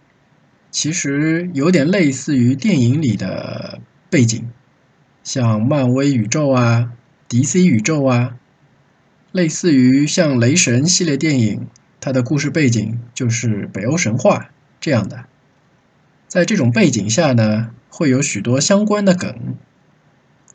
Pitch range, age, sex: 115-145 Hz, 20-39, male